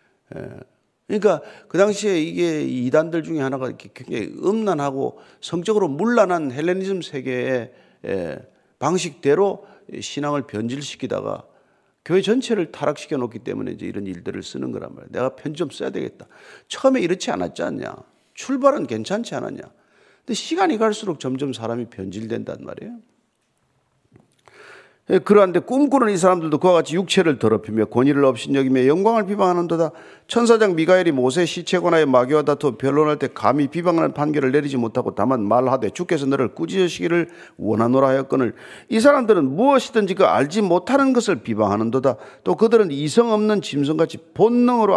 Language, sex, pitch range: Korean, male, 135-205 Hz